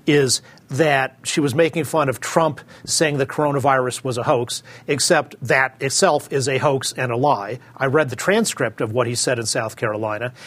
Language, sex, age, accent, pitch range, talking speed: English, male, 40-59, American, 120-145 Hz, 195 wpm